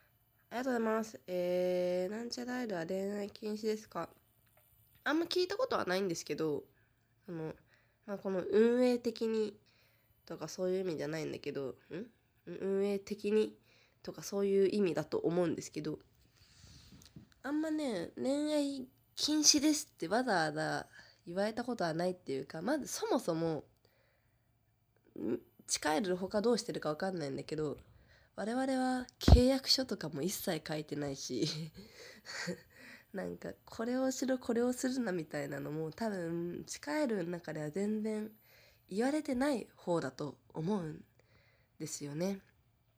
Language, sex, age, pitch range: Japanese, female, 20-39, 135-215 Hz